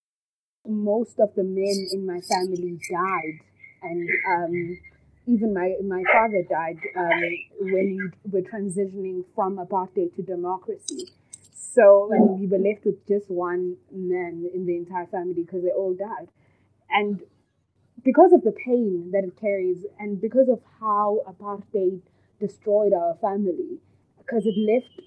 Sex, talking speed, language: female, 140 wpm, English